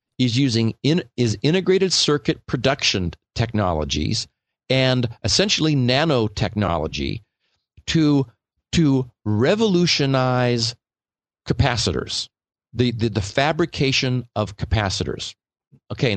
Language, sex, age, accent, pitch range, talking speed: English, male, 50-69, American, 110-140 Hz, 80 wpm